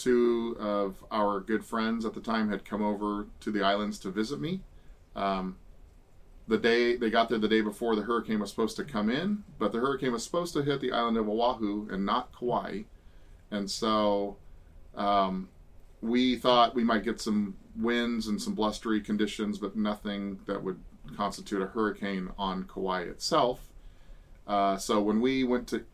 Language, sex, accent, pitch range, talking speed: English, male, American, 95-115 Hz, 180 wpm